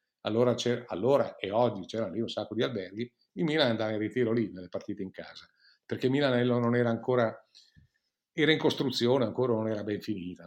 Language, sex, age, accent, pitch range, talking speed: Italian, male, 50-69, native, 110-155 Hz, 195 wpm